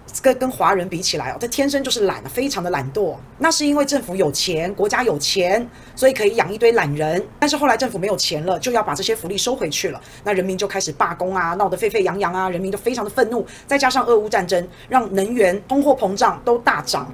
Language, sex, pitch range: Chinese, female, 185-250 Hz